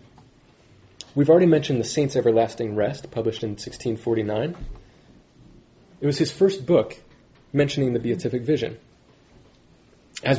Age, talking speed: 30-49, 115 wpm